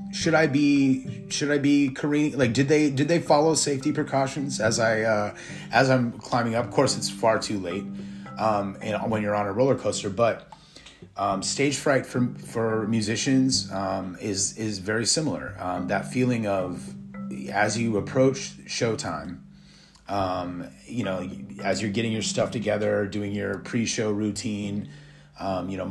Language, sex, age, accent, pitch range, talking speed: English, male, 30-49, American, 95-125 Hz, 165 wpm